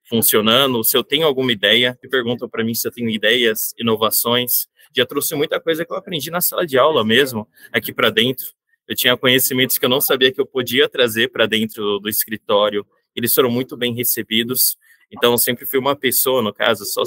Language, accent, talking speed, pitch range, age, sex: Portuguese, Brazilian, 205 wpm, 115-145 Hz, 20-39, male